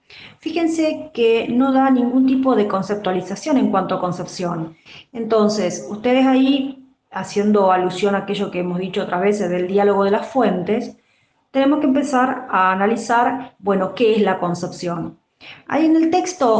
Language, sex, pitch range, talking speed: Spanish, female, 185-245 Hz, 155 wpm